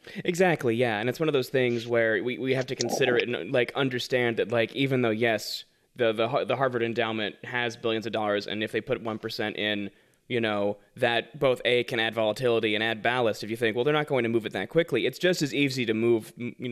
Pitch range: 110-130 Hz